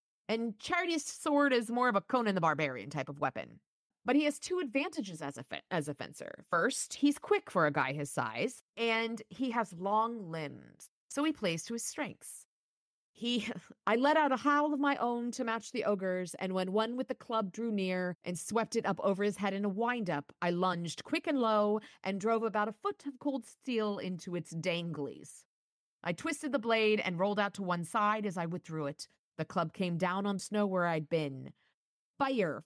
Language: English